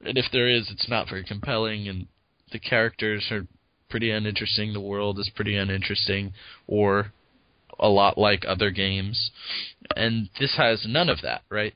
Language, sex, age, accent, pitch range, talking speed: English, male, 20-39, American, 100-115 Hz, 165 wpm